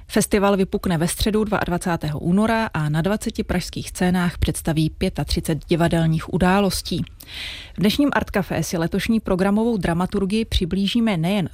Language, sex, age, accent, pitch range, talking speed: Czech, female, 30-49, native, 160-200 Hz, 130 wpm